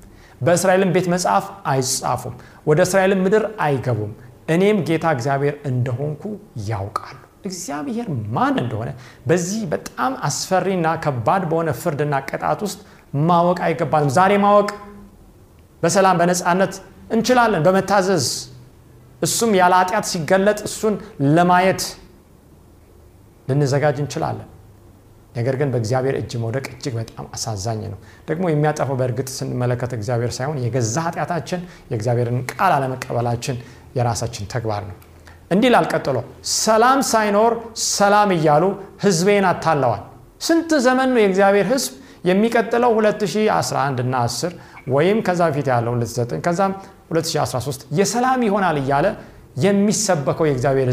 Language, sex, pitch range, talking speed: Amharic, male, 120-190 Hz, 95 wpm